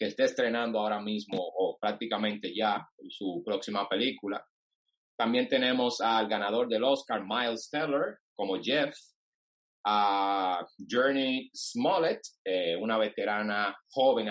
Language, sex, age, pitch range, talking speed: Spanish, male, 30-49, 110-160 Hz, 115 wpm